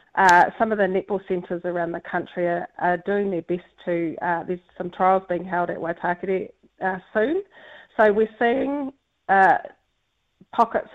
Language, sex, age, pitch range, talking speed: English, female, 30-49, 175-210 Hz, 165 wpm